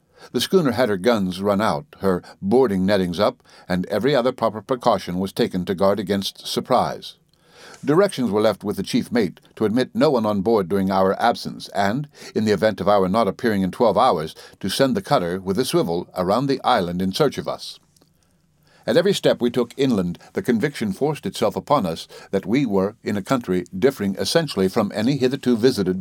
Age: 60-79